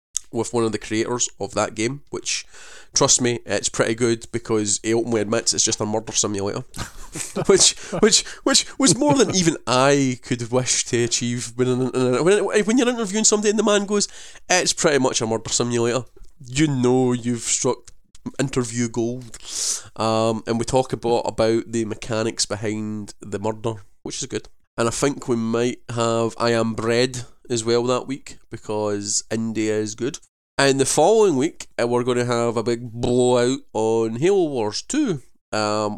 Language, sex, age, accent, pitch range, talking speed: English, male, 20-39, British, 110-125 Hz, 170 wpm